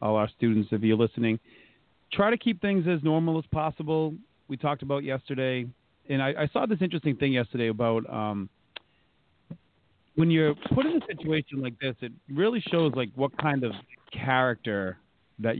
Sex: male